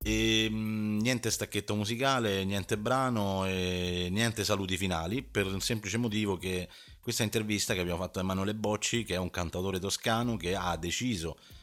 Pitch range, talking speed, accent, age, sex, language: 85-105 Hz, 165 wpm, native, 30-49, male, Italian